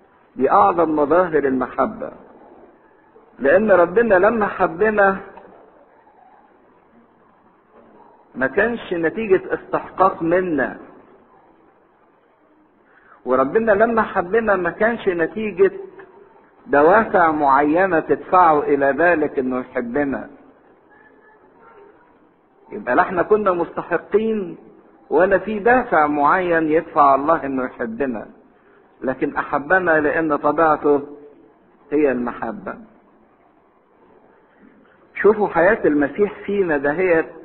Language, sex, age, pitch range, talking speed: English, male, 50-69, 145-215 Hz, 75 wpm